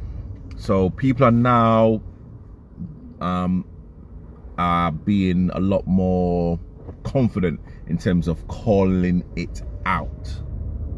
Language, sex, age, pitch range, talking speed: English, male, 30-49, 80-100 Hz, 100 wpm